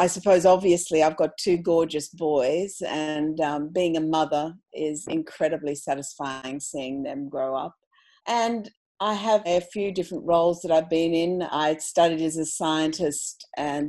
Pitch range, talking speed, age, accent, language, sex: 155-195 Hz, 160 wpm, 50-69, Australian, English, female